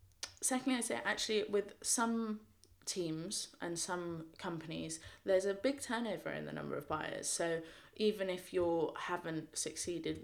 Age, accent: 20-39, British